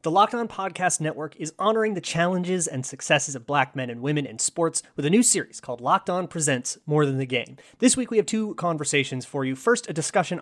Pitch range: 130-175 Hz